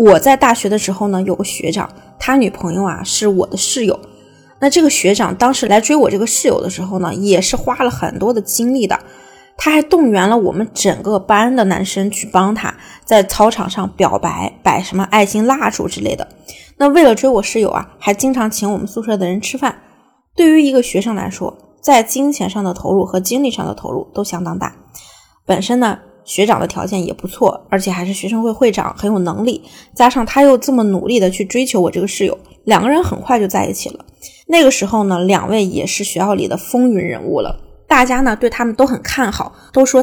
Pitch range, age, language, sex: 195-250 Hz, 20-39, Chinese, female